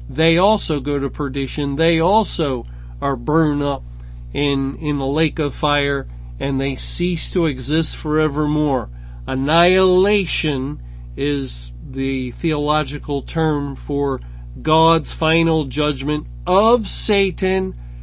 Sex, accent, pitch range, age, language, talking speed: male, American, 130-160 Hz, 50-69, English, 110 wpm